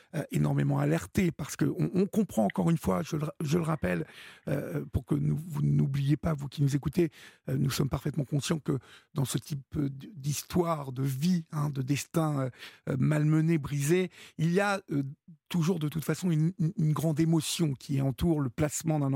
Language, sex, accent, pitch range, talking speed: French, male, French, 140-170 Hz, 190 wpm